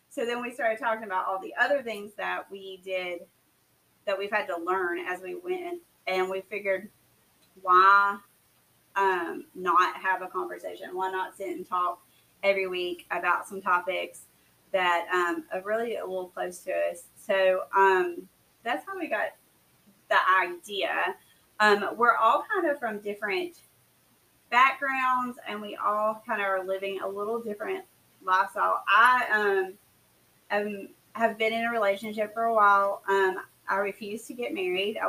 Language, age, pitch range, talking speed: English, 30-49, 185-220 Hz, 160 wpm